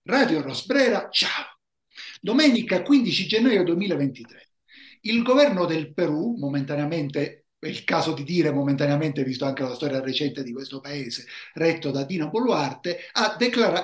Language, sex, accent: Italian, male, native